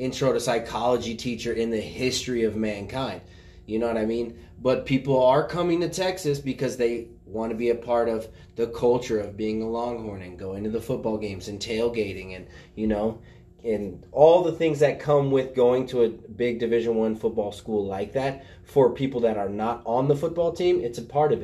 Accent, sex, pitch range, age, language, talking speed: American, male, 105-130 Hz, 20-39, English, 210 wpm